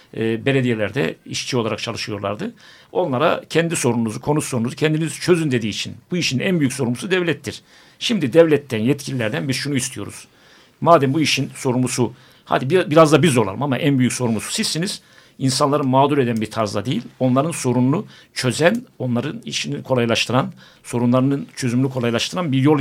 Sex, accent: male, native